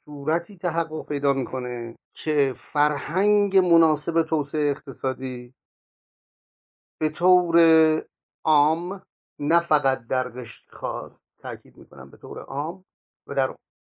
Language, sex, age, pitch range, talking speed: Persian, male, 50-69, 130-160 Hz, 105 wpm